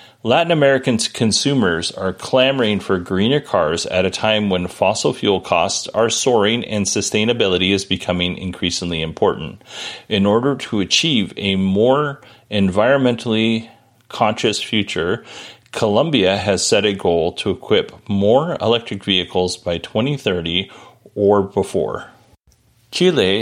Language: English